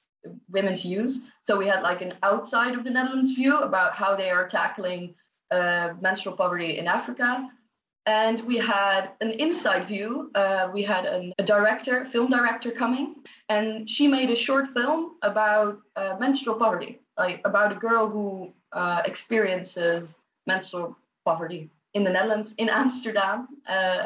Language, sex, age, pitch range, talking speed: English, female, 20-39, 185-235 Hz, 155 wpm